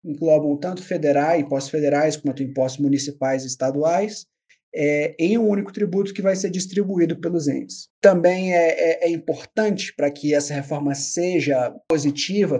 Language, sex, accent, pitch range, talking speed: Portuguese, male, Brazilian, 145-190 Hz, 145 wpm